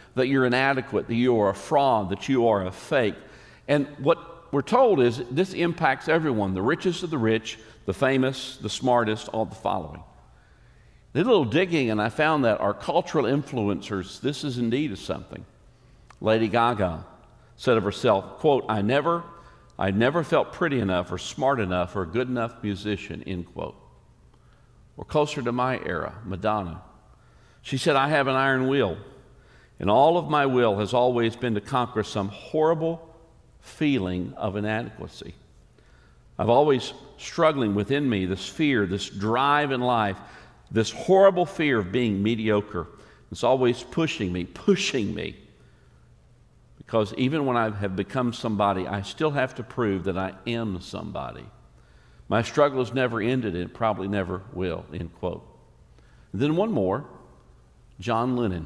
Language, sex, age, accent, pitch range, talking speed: English, male, 50-69, American, 100-135 Hz, 160 wpm